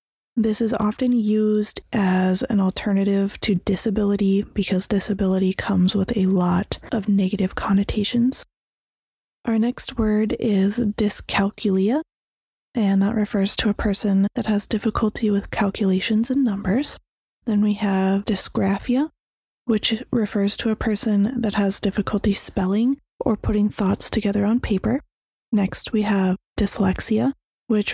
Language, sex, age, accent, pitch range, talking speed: English, female, 20-39, American, 195-225 Hz, 130 wpm